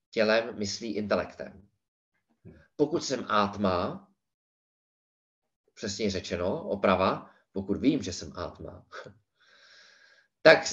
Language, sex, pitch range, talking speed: Danish, male, 100-140 Hz, 85 wpm